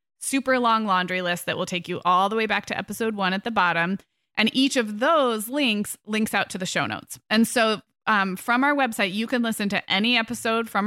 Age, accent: 20-39, American